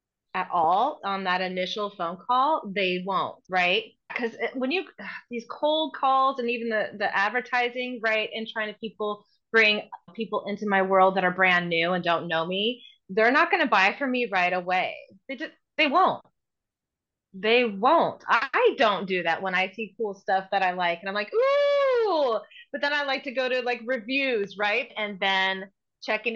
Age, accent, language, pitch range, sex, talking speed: 30-49, American, English, 195-275 Hz, female, 190 wpm